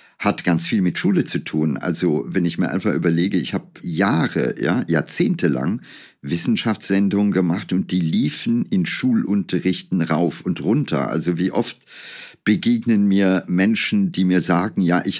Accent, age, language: German, 50-69, German